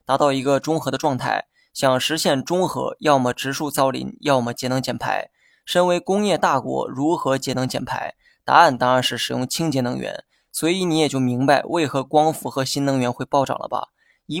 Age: 20-39